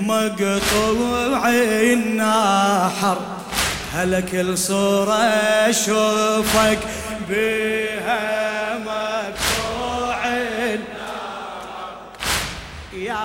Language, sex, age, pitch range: Arabic, male, 20-39, 215-245 Hz